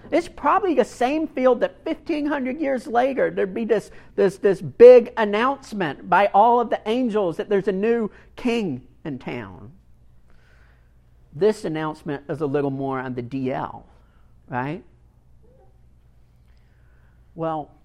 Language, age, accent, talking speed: English, 50-69, American, 130 wpm